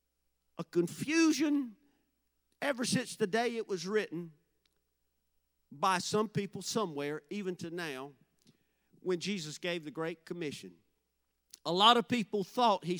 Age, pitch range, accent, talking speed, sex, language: 40-59, 150-200 Hz, American, 130 wpm, male, English